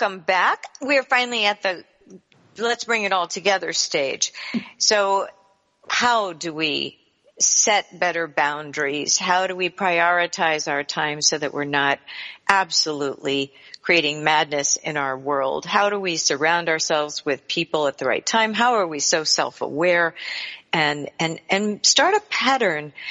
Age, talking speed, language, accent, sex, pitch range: 50-69, 155 wpm, English, American, female, 150-195 Hz